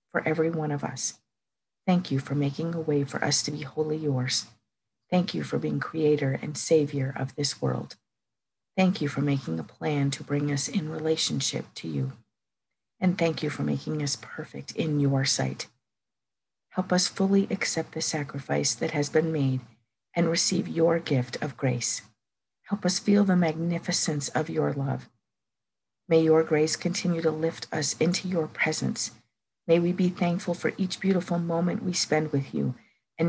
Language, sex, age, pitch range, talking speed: English, female, 50-69, 130-160 Hz, 175 wpm